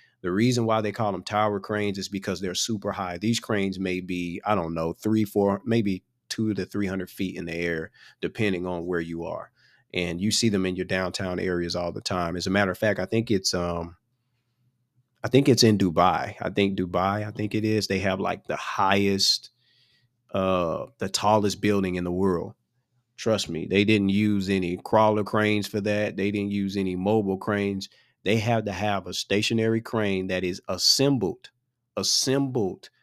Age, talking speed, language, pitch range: 30-49, 195 wpm, English, 95-110 Hz